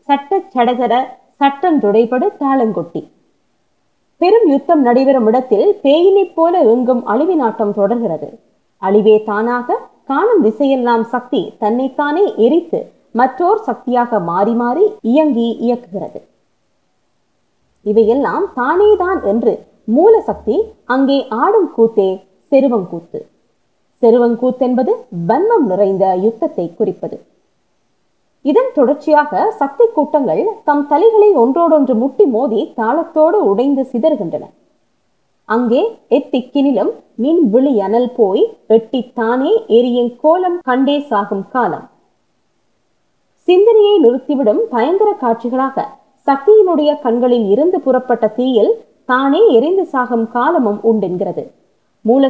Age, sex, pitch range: 20-39, female, 230-335 Hz